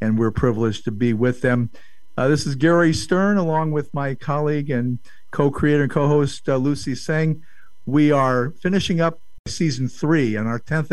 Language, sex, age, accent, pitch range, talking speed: English, male, 50-69, American, 125-150 Hz, 170 wpm